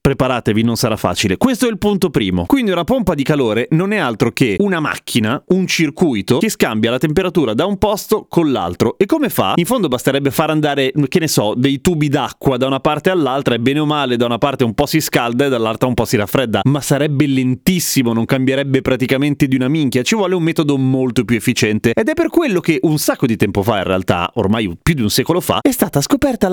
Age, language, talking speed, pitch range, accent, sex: 30-49, Italian, 235 wpm, 125-185 Hz, native, male